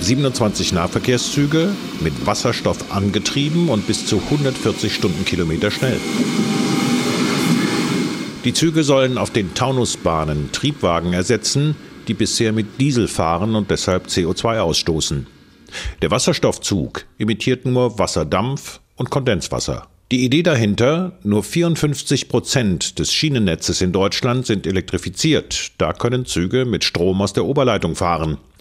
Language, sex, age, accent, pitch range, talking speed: German, male, 50-69, German, 90-130 Hz, 115 wpm